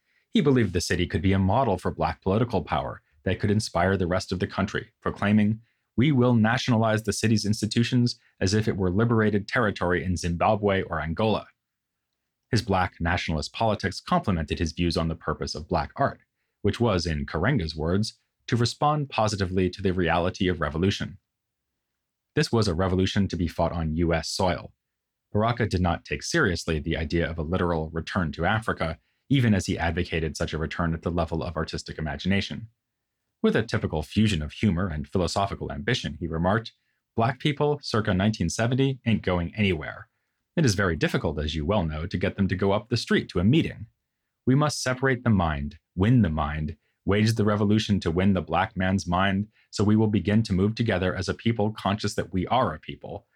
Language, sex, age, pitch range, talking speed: English, male, 30-49, 85-110 Hz, 190 wpm